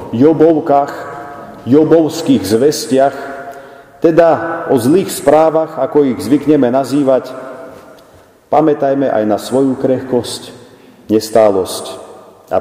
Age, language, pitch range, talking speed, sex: 50-69, Slovak, 115-150 Hz, 85 wpm, male